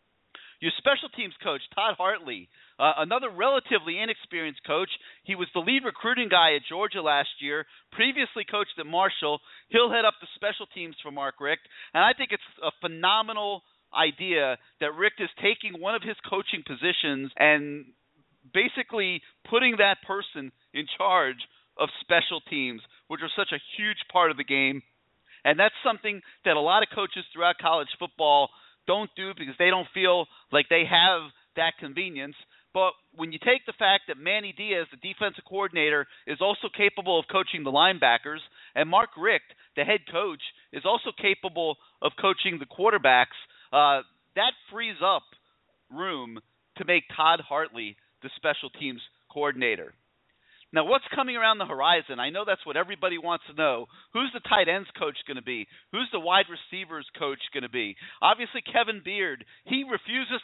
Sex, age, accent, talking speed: male, 40-59, American, 170 wpm